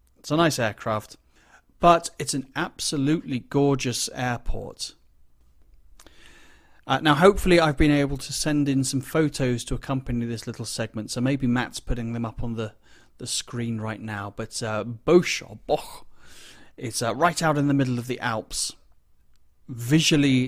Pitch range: 115-140 Hz